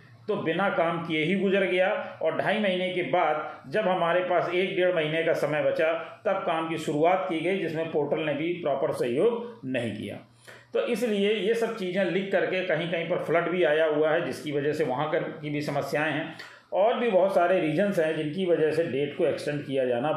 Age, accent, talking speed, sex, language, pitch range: 40-59, native, 215 wpm, male, Hindi, 155-190 Hz